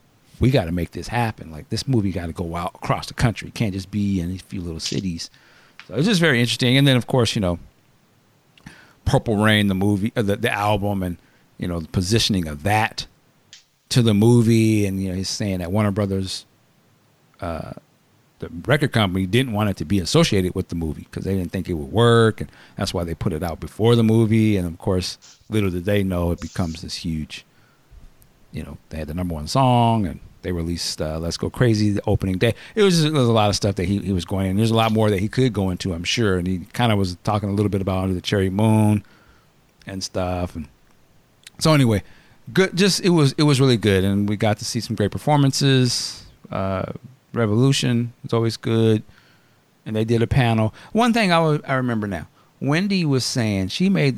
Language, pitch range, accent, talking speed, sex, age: English, 95-120 Hz, American, 225 wpm, male, 50-69